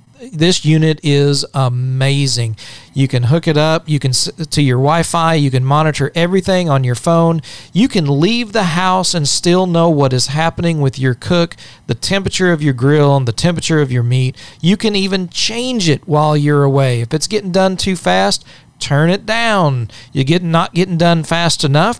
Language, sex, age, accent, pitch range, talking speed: English, male, 40-59, American, 130-165 Hz, 190 wpm